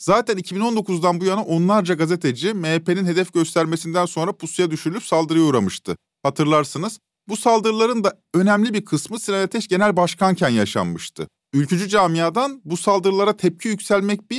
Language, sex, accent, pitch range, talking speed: Turkish, male, native, 155-200 Hz, 140 wpm